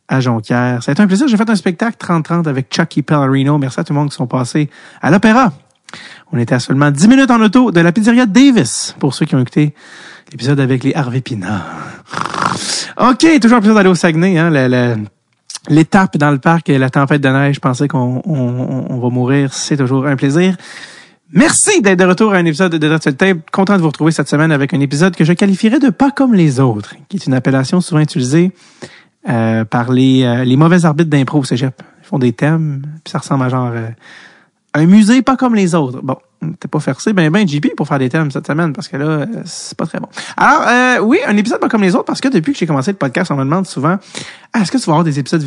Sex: male